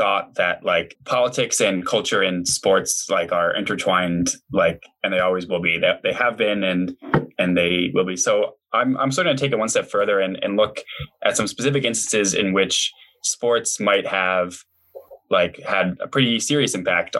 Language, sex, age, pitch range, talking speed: English, male, 10-29, 95-125 Hz, 195 wpm